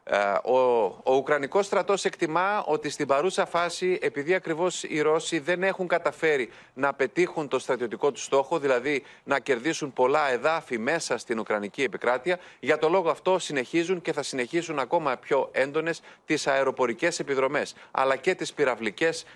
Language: Greek